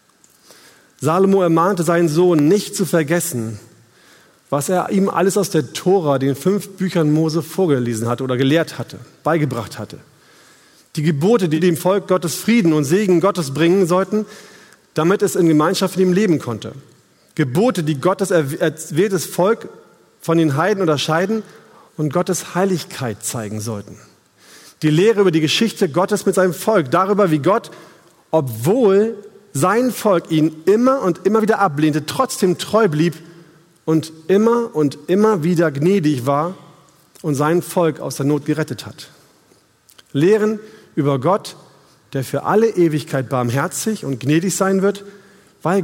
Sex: male